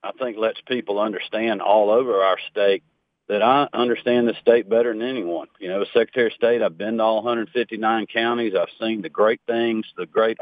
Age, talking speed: 40-59, 205 wpm